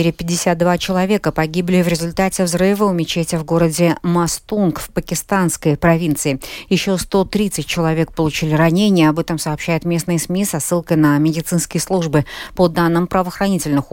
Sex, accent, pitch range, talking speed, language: female, native, 150-185 Hz, 140 wpm, Russian